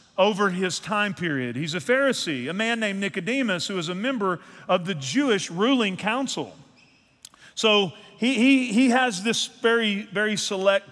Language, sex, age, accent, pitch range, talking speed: English, male, 40-59, American, 190-260 Hz, 160 wpm